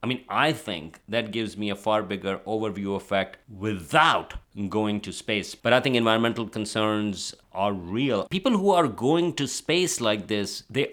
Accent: Indian